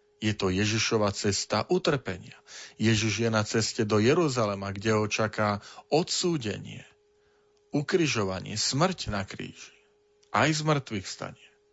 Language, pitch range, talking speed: Slovak, 105-155 Hz, 120 wpm